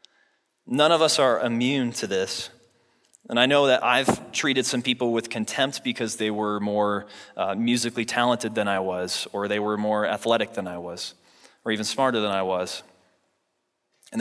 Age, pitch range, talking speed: 20-39, 110-135 Hz, 175 wpm